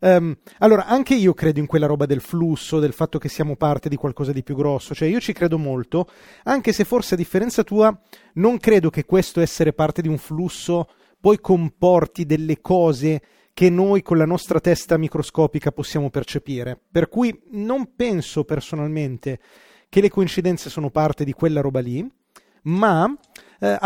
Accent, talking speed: native, 170 wpm